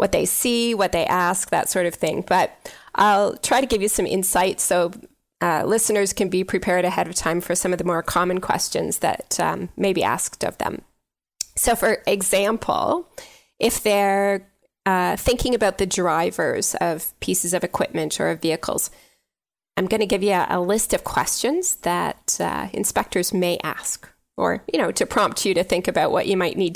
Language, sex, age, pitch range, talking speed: English, female, 20-39, 175-205 Hz, 195 wpm